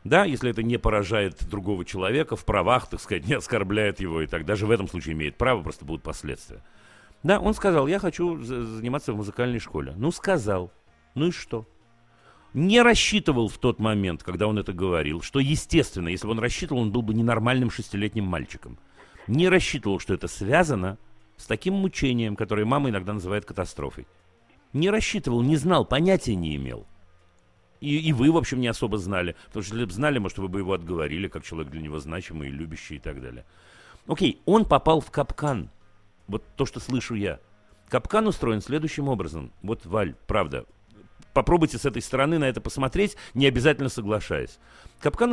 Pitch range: 90-140 Hz